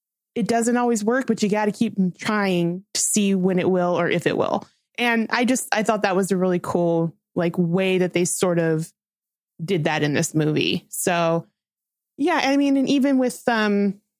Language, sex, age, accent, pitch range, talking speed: English, female, 20-39, American, 180-220 Hz, 205 wpm